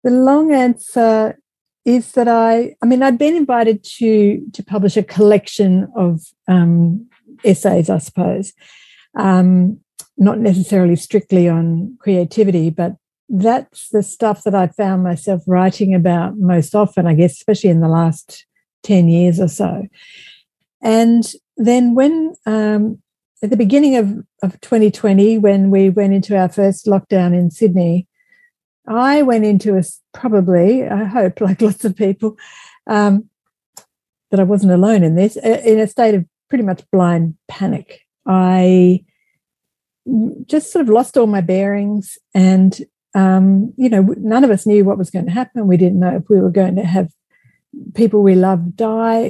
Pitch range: 185-225 Hz